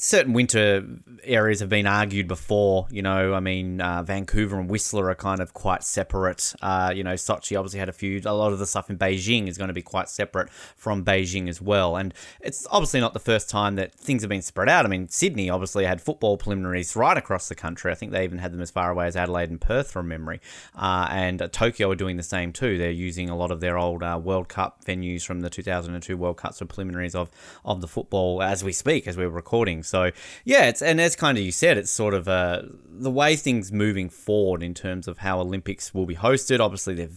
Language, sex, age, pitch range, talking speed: English, male, 20-39, 95-115 Hz, 240 wpm